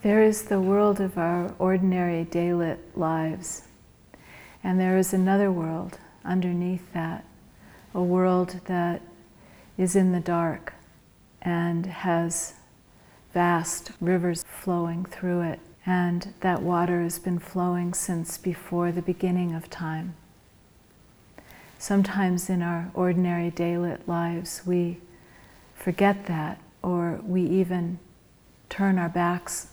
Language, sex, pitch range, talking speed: English, female, 170-185 Hz, 115 wpm